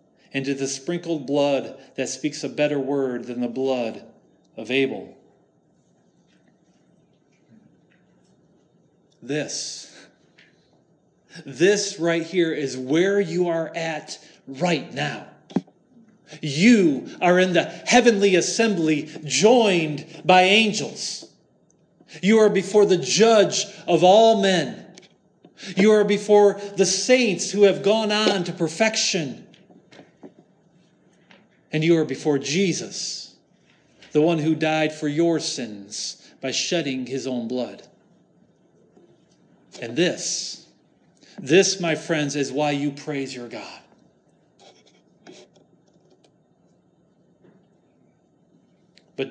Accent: American